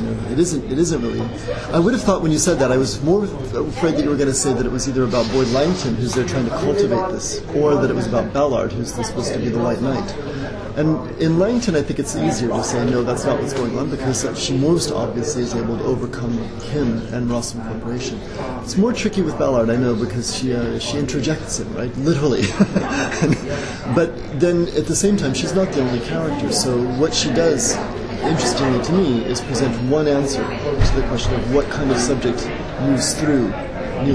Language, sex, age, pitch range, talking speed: English, male, 30-49, 115-145 Hz, 220 wpm